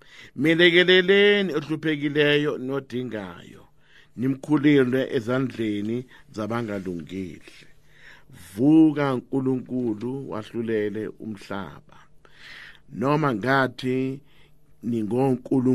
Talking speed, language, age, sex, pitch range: 60 wpm, English, 50-69, male, 100-140 Hz